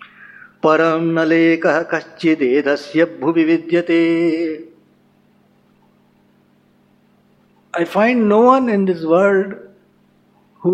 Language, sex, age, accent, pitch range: English, male, 60-79, Indian, 165-210 Hz